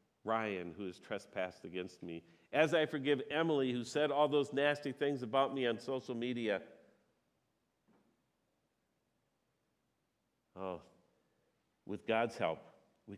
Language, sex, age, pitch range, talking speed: English, male, 50-69, 110-155 Hz, 120 wpm